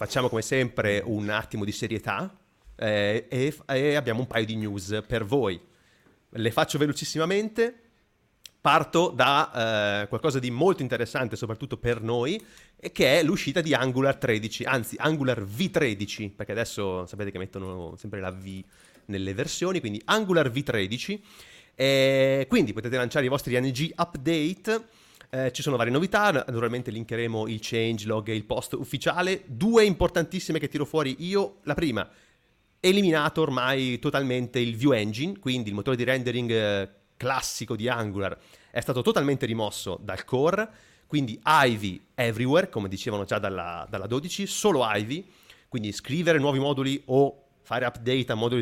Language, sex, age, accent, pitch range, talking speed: Italian, male, 30-49, native, 110-150 Hz, 150 wpm